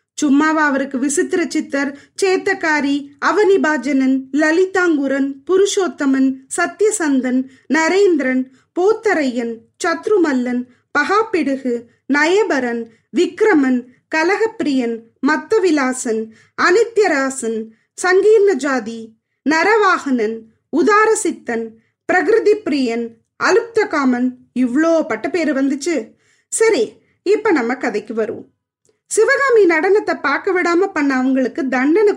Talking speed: 70 wpm